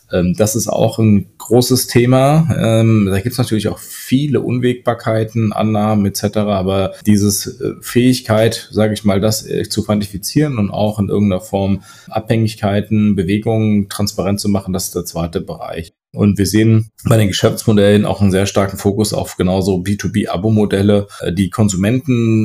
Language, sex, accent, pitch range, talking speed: German, male, German, 100-110 Hz, 145 wpm